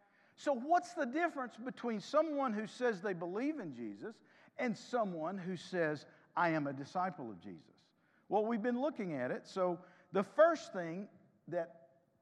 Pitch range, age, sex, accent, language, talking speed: 175-245 Hz, 50-69, male, American, English, 160 wpm